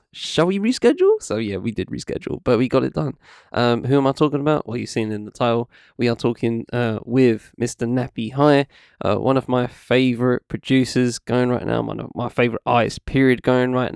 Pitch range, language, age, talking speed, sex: 110-125 Hz, English, 20-39, 210 wpm, male